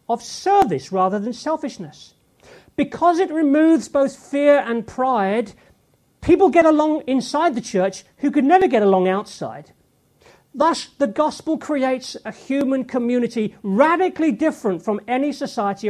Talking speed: 135 wpm